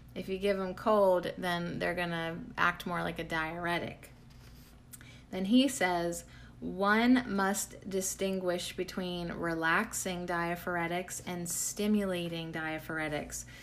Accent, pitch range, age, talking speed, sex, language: American, 170-195 Hz, 30-49, 110 wpm, female, English